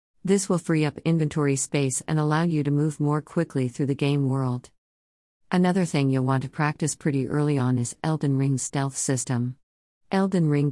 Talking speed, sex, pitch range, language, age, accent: 185 wpm, female, 130-155 Hz, English, 50-69, American